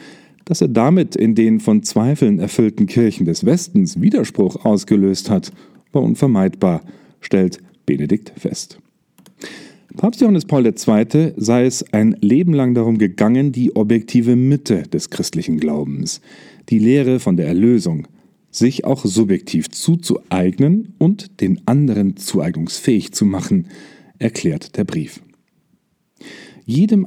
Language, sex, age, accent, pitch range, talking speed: German, male, 40-59, German, 100-160 Hz, 120 wpm